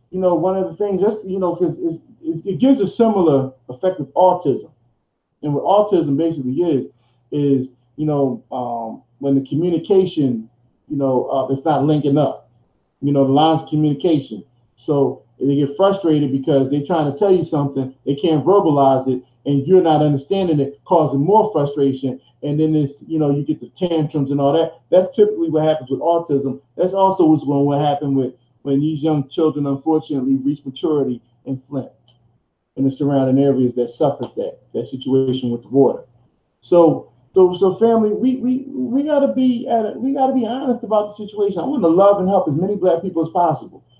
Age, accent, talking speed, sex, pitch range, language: 20-39, American, 195 wpm, male, 135-180 Hz, English